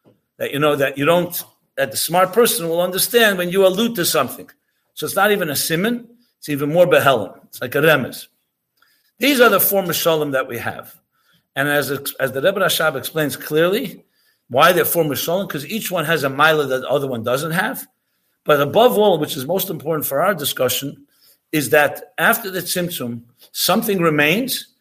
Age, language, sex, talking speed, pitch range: 50-69, English, male, 190 wpm, 145-190 Hz